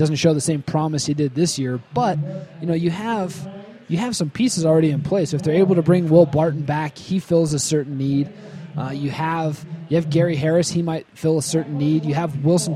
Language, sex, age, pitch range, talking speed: English, male, 20-39, 145-170 Hz, 235 wpm